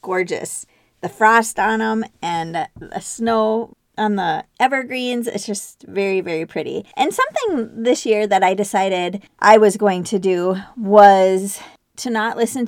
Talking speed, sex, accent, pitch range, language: 150 wpm, female, American, 185-230 Hz, English